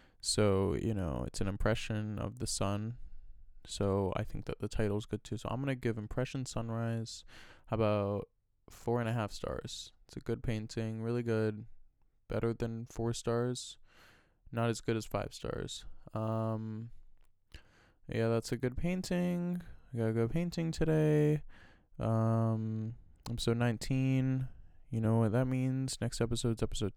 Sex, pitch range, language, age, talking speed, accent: male, 105-125 Hz, English, 20-39, 155 wpm, American